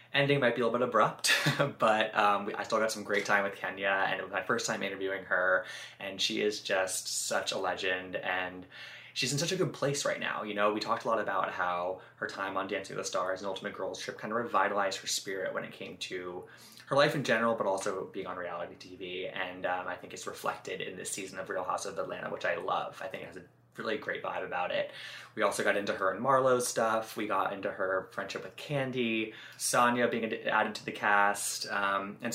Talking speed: 240 wpm